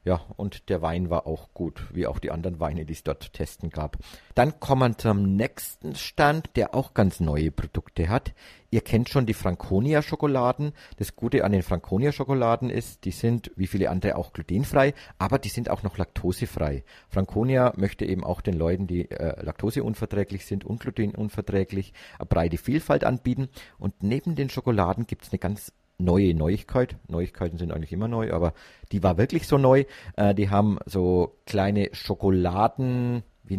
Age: 50-69